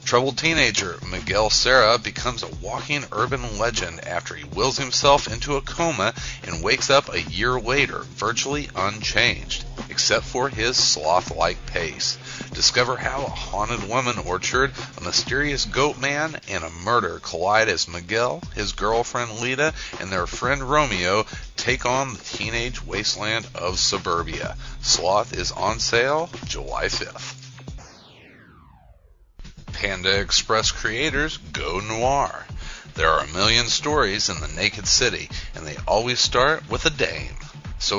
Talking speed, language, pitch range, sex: 135 wpm, English, 100-135 Hz, male